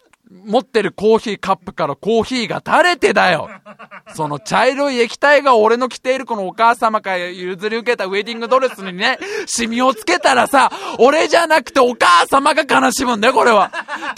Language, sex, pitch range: Japanese, male, 235-325 Hz